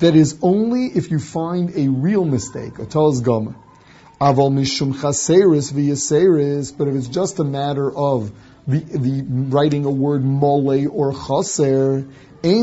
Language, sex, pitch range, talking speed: English, male, 140-185 Hz, 110 wpm